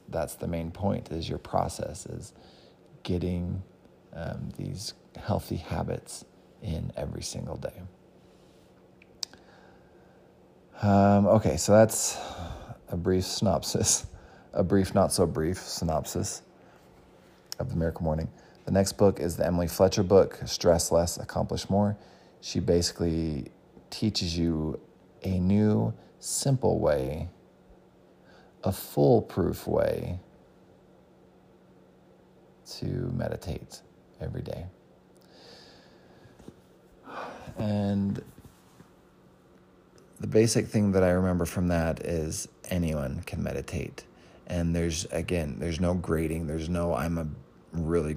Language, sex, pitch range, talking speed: English, male, 80-100 Hz, 105 wpm